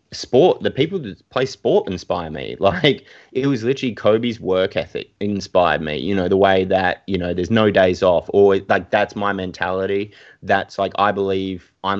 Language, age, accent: English, 20-39, Australian